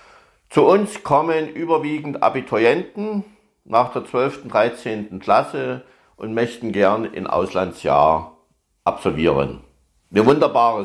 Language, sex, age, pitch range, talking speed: German, male, 60-79, 100-145 Hz, 105 wpm